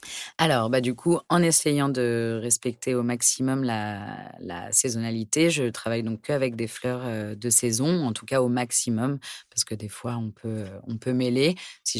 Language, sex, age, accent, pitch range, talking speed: French, female, 30-49, French, 115-130 Hz, 180 wpm